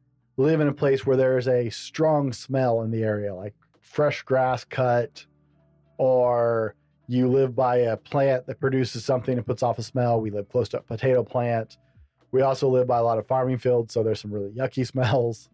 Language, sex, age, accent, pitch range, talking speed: English, male, 40-59, American, 120-140 Hz, 200 wpm